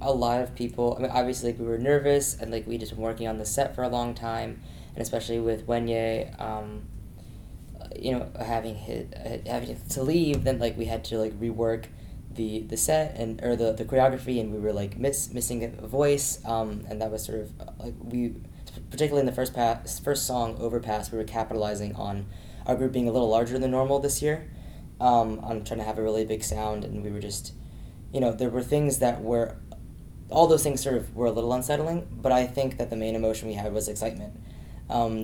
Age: 10-29